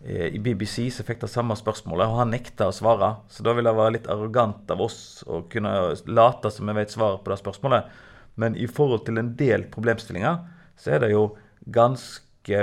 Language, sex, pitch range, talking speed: English, male, 105-120 Hz, 185 wpm